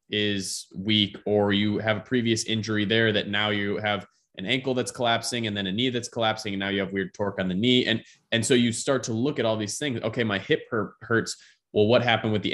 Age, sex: 20-39, male